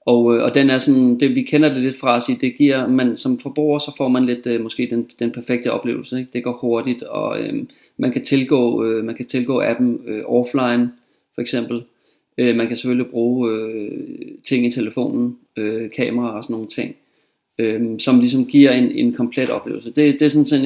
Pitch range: 120-135 Hz